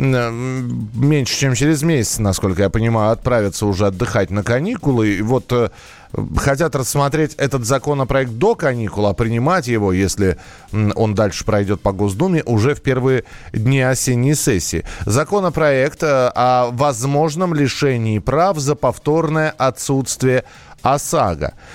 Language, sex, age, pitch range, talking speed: Russian, male, 20-39, 115-145 Hz, 120 wpm